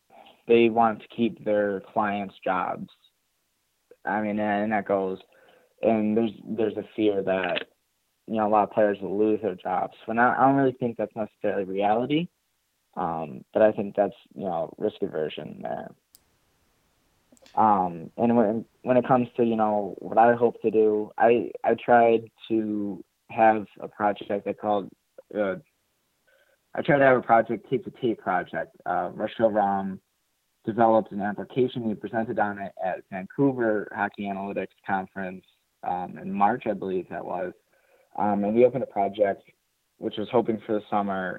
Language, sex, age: English, male, 20-39